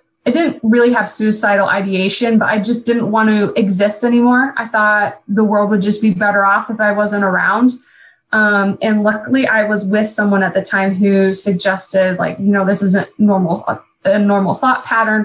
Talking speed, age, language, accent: 195 wpm, 20-39, English, American